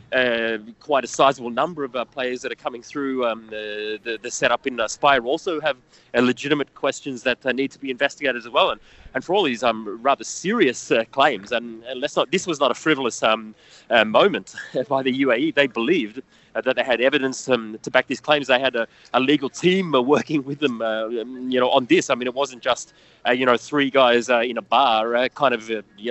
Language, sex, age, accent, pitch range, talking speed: English, male, 30-49, Australian, 115-140 Hz, 240 wpm